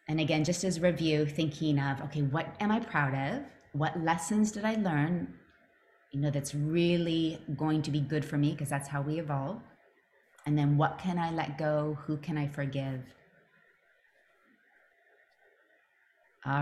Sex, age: female, 30-49